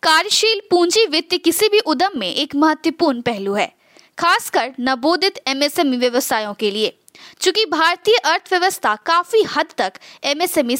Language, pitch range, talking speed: Hindi, 265-360 Hz, 135 wpm